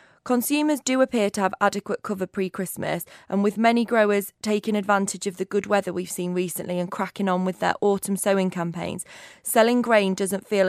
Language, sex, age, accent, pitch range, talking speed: English, female, 20-39, British, 190-220 Hz, 185 wpm